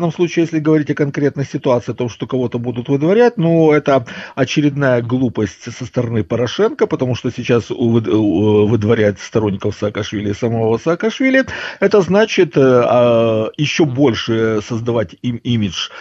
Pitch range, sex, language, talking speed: 110-155 Hz, male, Russian, 140 wpm